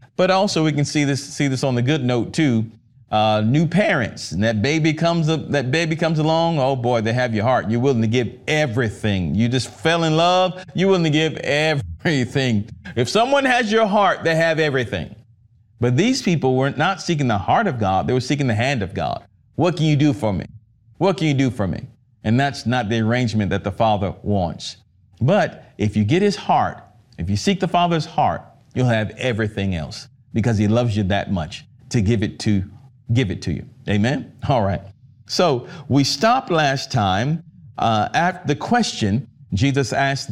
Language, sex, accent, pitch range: English, male, American, 115-155 Hz